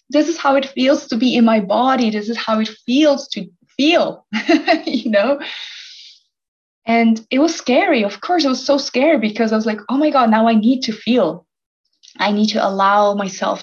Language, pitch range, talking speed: English, 205-275 Hz, 205 wpm